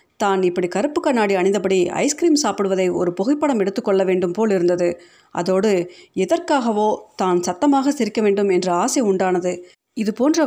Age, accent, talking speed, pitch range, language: 30-49, native, 130 wpm, 185-255 Hz, Tamil